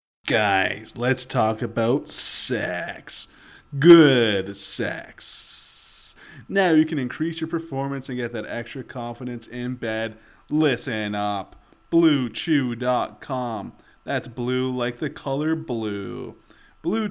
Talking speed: 105 wpm